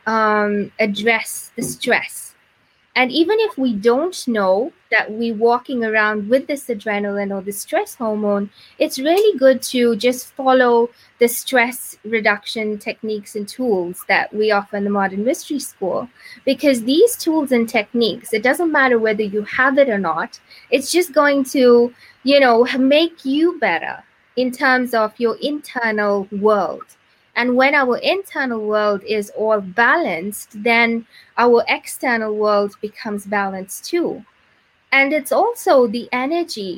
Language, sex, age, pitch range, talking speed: English, female, 20-39, 215-285 Hz, 145 wpm